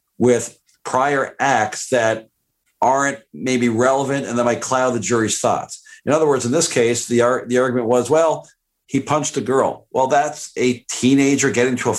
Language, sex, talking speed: English, male, 180 wpm